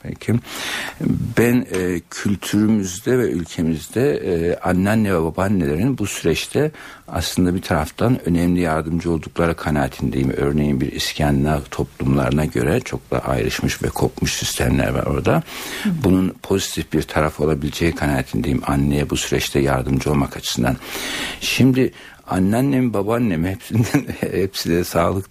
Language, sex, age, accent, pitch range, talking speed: Turkish, male, 60-79, native, 75-95 Hz, 115 wpm